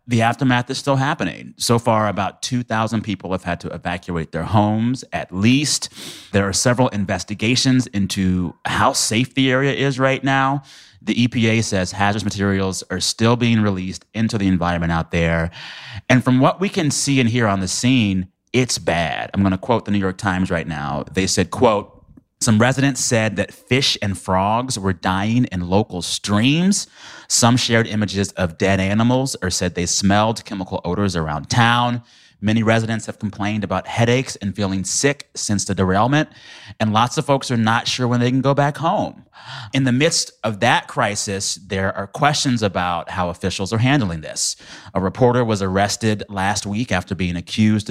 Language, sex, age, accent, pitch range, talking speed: English, male, 30-49, American, 95-125 Hz, 180 wpm